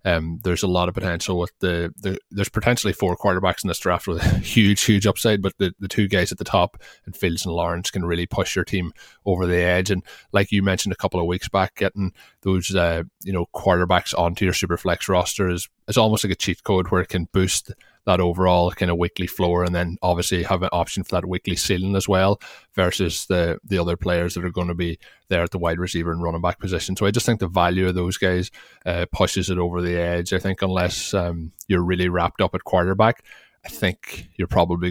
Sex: male